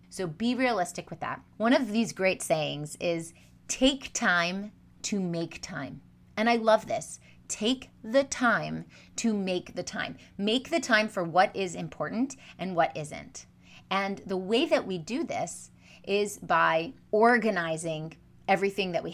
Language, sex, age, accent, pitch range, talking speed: English, female, 30-49, American, 175-235 Hz, 155 wpm